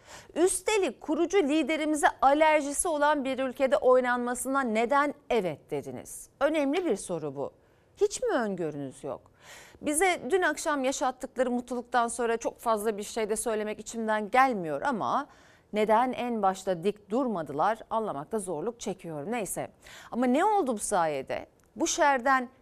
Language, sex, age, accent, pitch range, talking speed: Turkish, female, 40-59, native, 215-290 Hz, 135 wpm